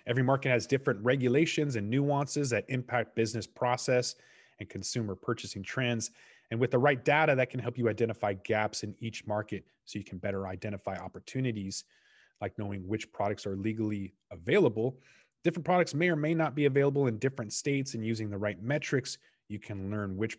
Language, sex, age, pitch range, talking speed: English, male, 30-49, 105-135 Hz, 180 wpm